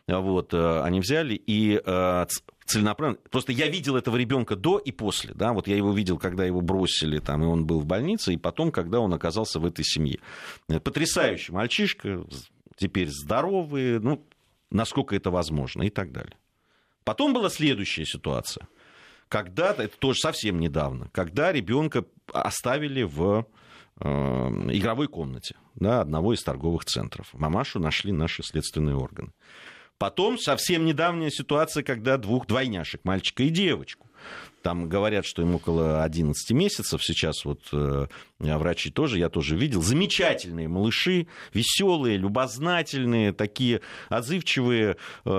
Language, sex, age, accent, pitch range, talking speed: Russian, male, 40-59, native, 85-135 Hz, 135 wpm